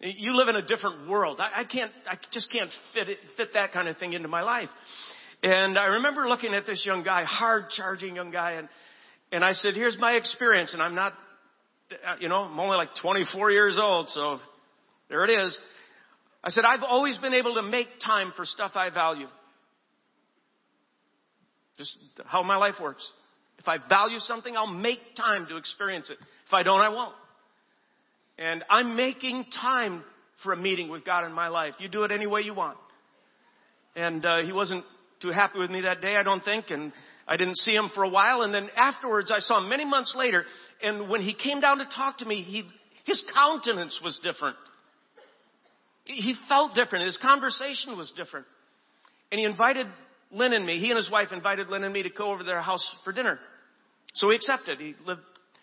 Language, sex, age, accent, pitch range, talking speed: English, male, 50-69, American, 185-240 Hz, 200 wpm